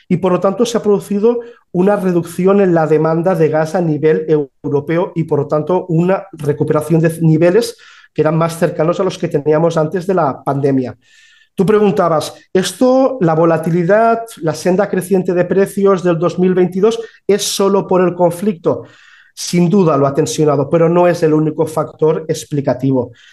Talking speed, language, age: 170 wpm, Spanish, 40-59